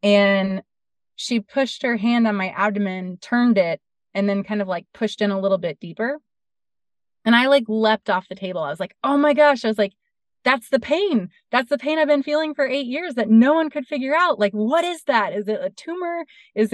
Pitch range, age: 195-245 Hz, 20-39